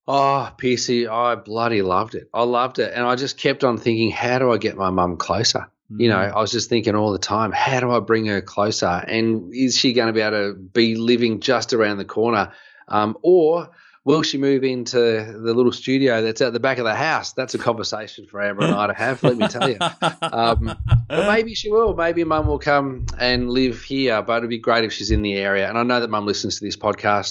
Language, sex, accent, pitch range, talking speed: English, male, Australian, 105-130 Hz, 245 wpm